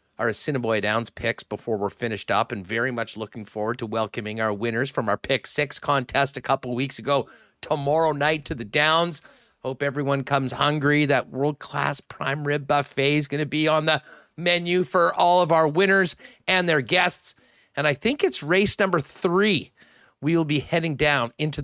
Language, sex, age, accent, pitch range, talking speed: English, male, 40-59, American, 130-160 Hz, 190 wpm